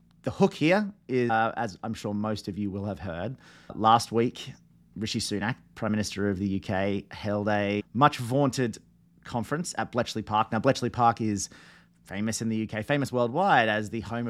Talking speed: 185 wpm